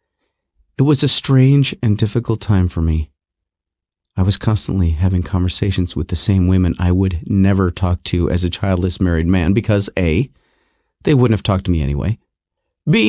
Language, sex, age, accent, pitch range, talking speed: English, male, 30-49, American, 100-140 Hz, 175 wpm